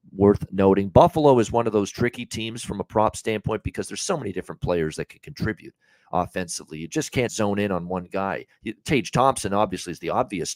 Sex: male